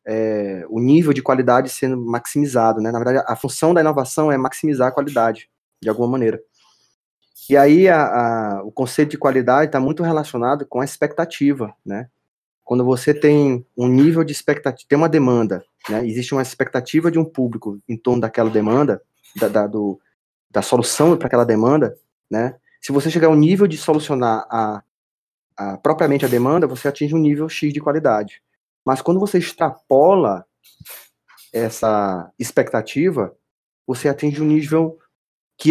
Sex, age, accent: male, 20-39, Brazilian